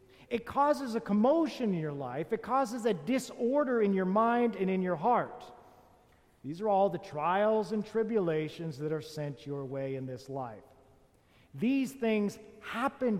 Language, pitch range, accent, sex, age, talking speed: English, 135-220 Hz, American, male, 50-69, 165 wpm